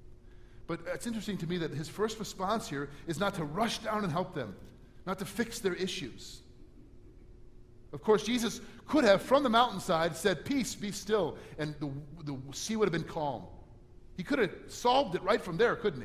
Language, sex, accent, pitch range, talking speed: English, male, American, 120-180 Hz, 195 wpm